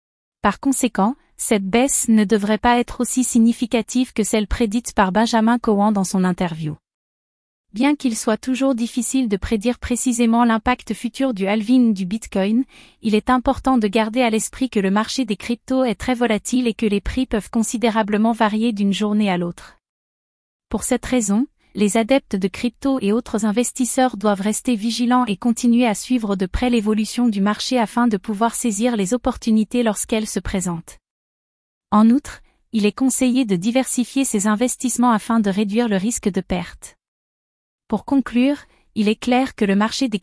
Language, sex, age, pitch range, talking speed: French, female, 30-49, 215-250 Hz, 170 wpm